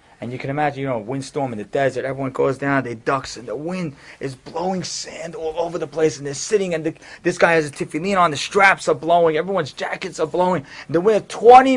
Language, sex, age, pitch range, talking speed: English, male, 30-49, 130-190 Hz, 245 wpm